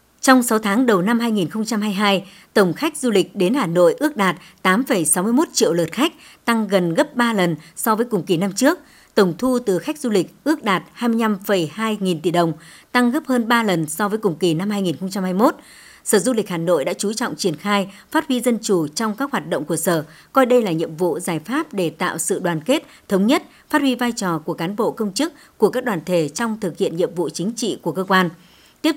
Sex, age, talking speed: male, 60-79, 230 wpm